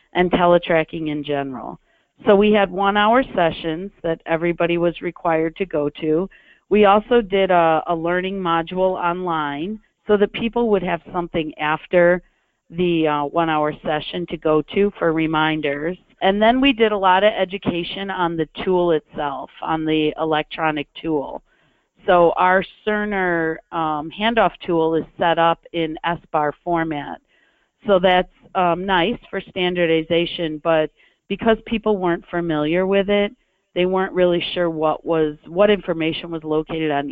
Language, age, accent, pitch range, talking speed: English, 40-59, American, 160-195 Hz, 150 wpm